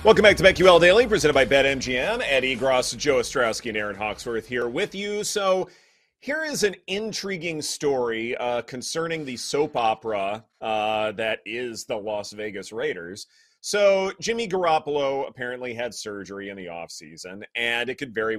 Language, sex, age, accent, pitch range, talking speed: English, male, 30-49, American, 110-175 Hz, 160 wpm